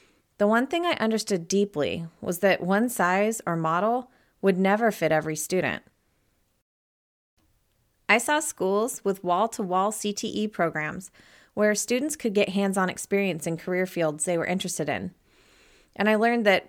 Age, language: 30-49, English